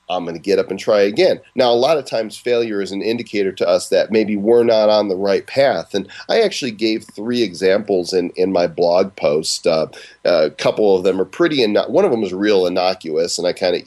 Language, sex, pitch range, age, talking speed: English, male, 90-115 Hz, 40-59, 245 wpm